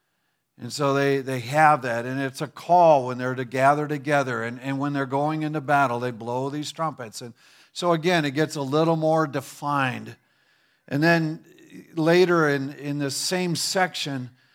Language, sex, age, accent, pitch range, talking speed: English, male, 50-69, American, 145-175 Hz, 175 wpm